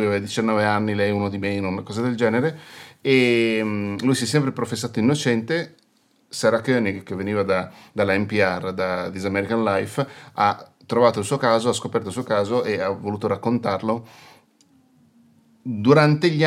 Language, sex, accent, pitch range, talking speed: Italian, male, native, 100-125 Hz, 160 wpm